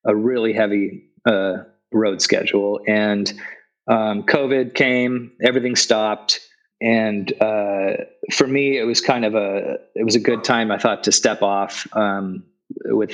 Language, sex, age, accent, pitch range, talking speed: English, male, 30-49, American, 100-120 Hz, 150 wpm